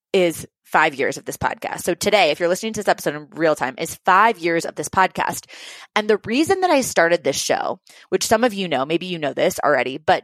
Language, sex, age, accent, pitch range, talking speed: English, female, 20-39, American, 175-245 Hz, 245 wpm